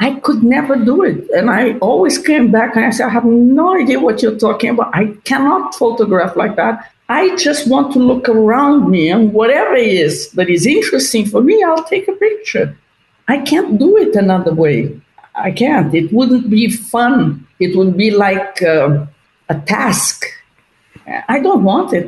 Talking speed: 190 wpm